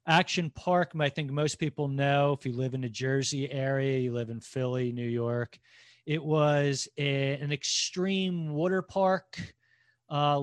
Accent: American